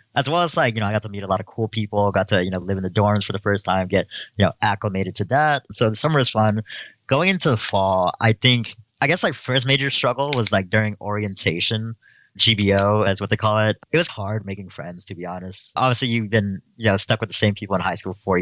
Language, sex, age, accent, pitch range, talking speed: English, male, 30-49, American, 95-115 Hz, 270 wpm